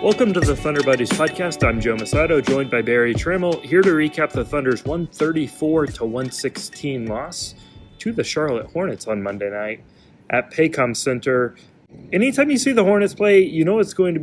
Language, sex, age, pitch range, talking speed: English, male, 30-49, 115-155 Hz, 175 wpm